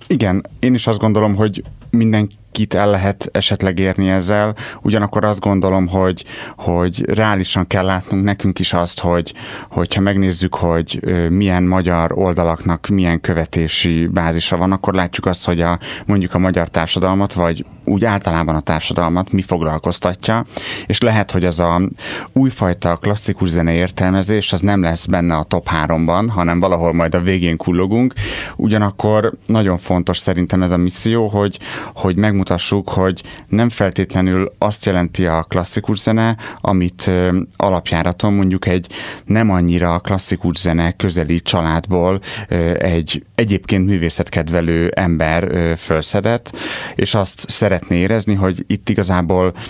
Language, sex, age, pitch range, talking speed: Hungarian, male, 30-49, 85-105 Hz, 140 wpm